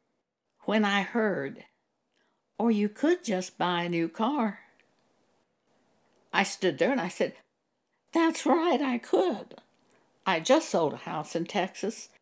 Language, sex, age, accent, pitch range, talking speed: English, female, 60-79, American, 175-230 Hz, 140 wpm